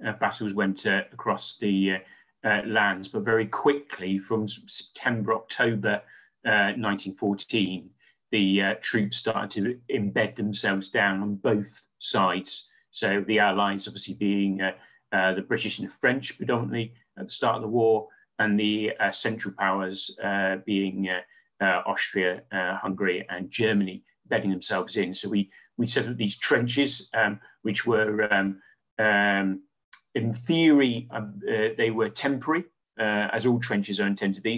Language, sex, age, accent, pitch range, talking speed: English, male, 30-49, British, 95-115 Hz, 160 wpm